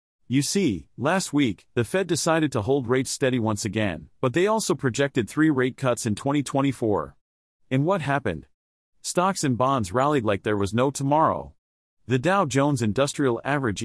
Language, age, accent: English, 40-59, American